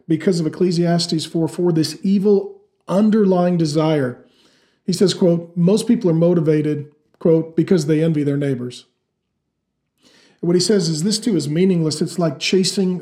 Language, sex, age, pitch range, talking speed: English, male, 40-59, 155-180 Hz, 155 wpm